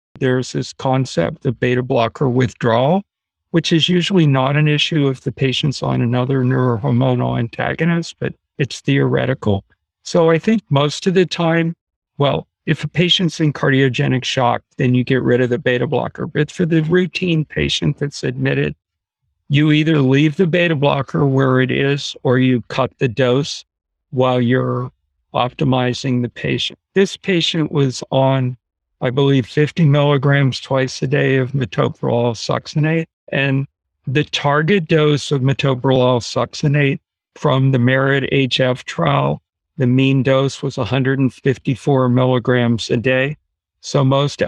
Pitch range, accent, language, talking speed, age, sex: 125-150 Hz, American, English, 145 wpm, 50-69, male